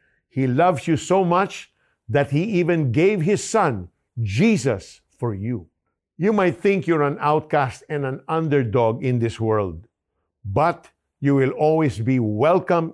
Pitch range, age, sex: 110-150 Hz, 50-69, male